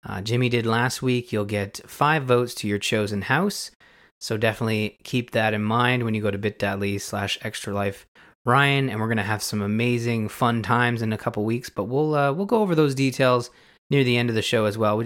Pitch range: 105-130 Hz